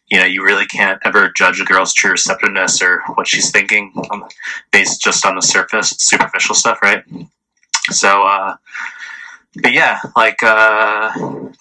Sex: male